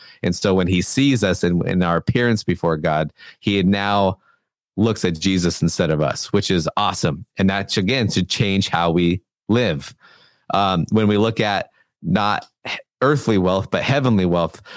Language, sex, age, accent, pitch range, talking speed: English, male, 30-49, American, 95-115 Hz, 170 wpm